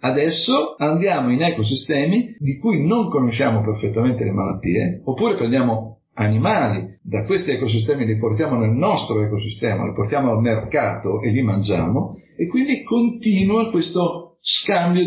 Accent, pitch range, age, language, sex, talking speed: native, 110-155 Hz, 50-69, Italian, male, 135 wpm